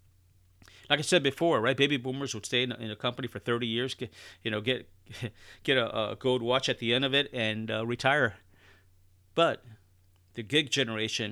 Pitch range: 95-125 Hz